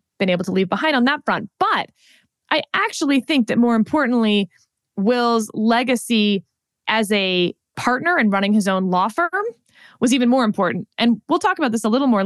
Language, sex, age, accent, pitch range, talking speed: English, female, 20-39, American, 200-255 Hz, 185 wpm